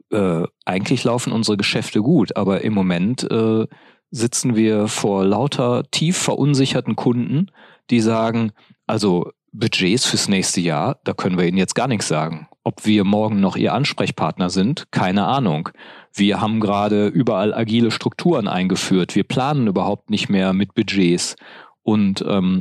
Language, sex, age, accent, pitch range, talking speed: German, male, 40-59, German, 100-120 Hz, 150 wpm